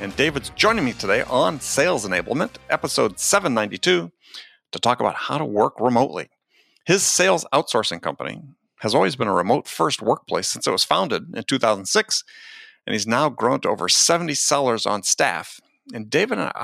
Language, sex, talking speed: English, male, 165 wpm